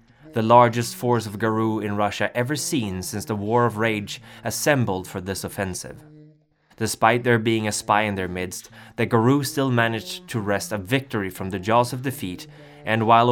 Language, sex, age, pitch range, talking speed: English, male, 20-39, 105-130 Hz, 185 wpm